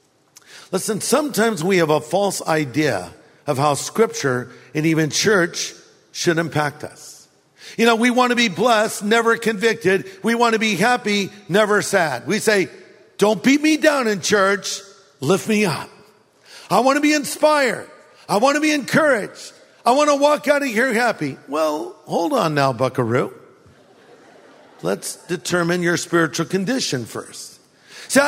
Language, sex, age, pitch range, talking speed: English, male, 50-69, 155-225 Hz, 155 wpm